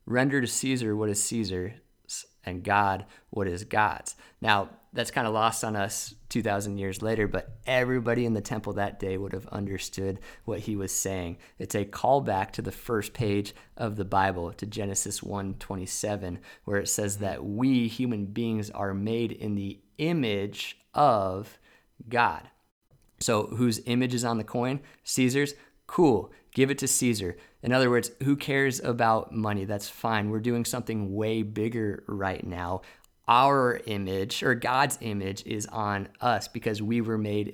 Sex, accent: male, American